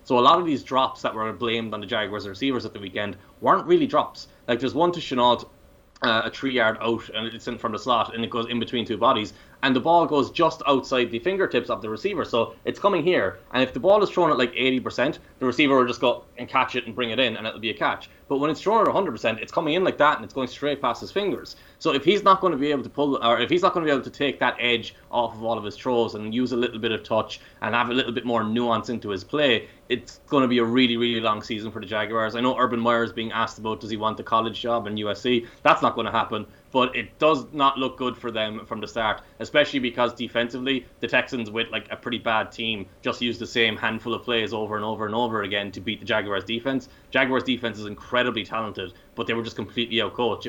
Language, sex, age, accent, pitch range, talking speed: English, male, 20-39, Irish, 110-125 Hz, 275 wpm